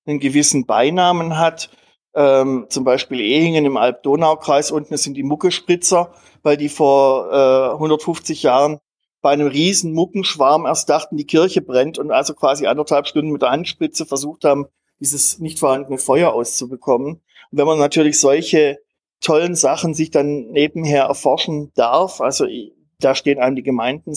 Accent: German